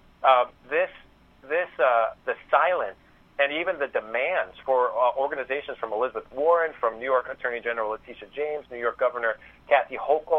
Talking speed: 160 wpm